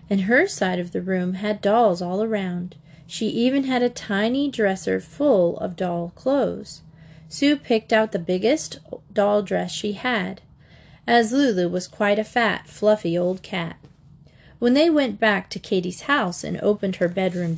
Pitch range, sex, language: 180-255 Hz, female, English